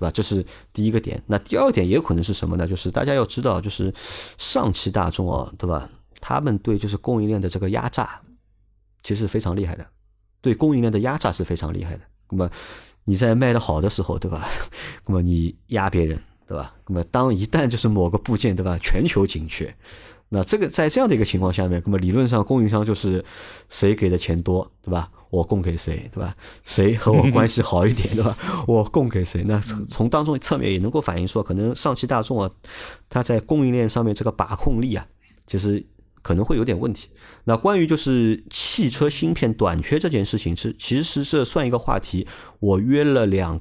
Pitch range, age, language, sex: 90-115 Hz, 30-49, Chinese, male